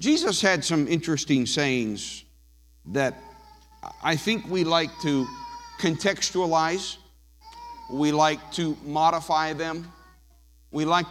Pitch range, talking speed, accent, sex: 120-175 Hz, 105 wpm, American, male